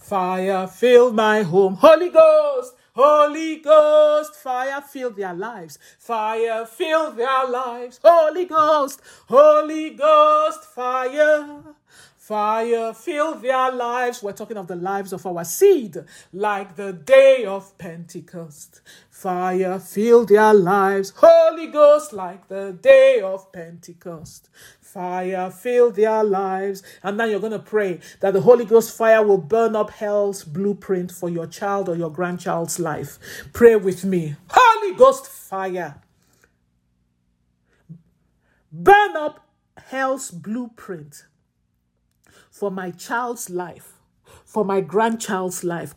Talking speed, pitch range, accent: 125 wpm, 180-260 Hz, Nigerian